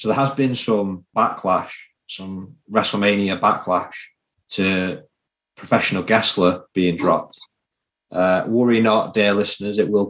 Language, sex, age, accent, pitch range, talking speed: English, male, 20-39, British, 95-110 Hz, 125 wpm